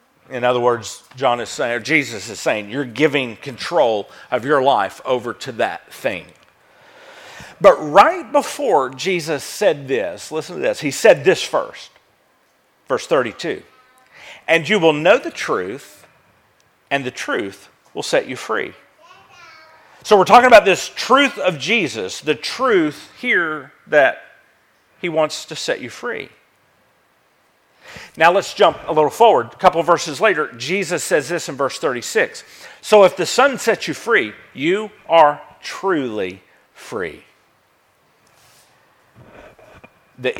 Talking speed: 140 wpm